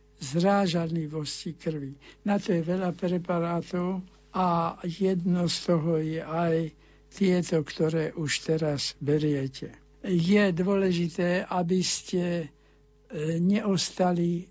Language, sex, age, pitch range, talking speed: Slovak, male, 60-79, 160-180 Hz, 95 wpm